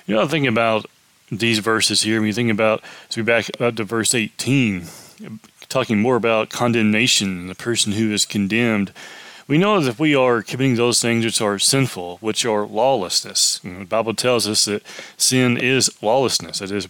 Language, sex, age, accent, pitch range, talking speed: English, male, 20-39, American, 110-135 Hz, 180 wpm